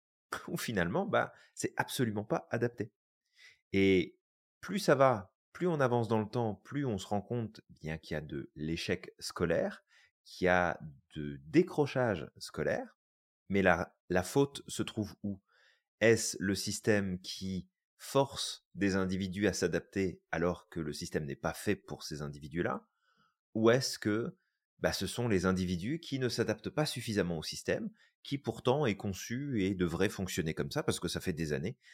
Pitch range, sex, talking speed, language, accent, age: 90-125 Hz, male, 170 wpm, French, French, 30-49